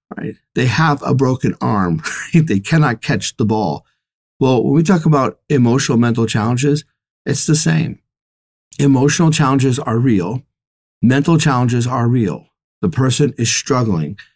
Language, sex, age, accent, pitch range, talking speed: English, male, 40-59, American, 115-145 Hz, 140 wpm